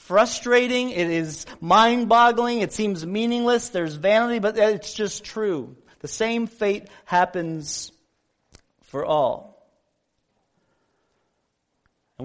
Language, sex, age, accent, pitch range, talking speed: English, male, 40-59, American, 155-225 Hz, 100 wpm